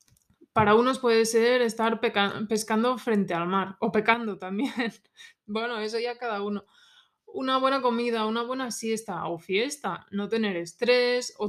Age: 20-39